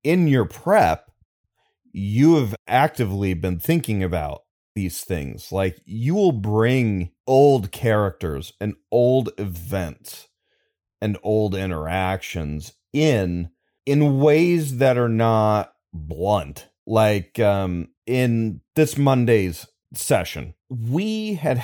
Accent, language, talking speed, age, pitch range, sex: American, English, 105 wpm, 30-49, 95-125 Hz, male